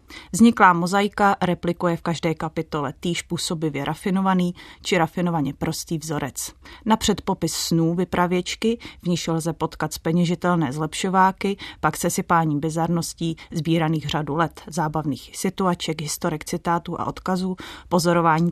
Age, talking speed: 30-49, 115 wpm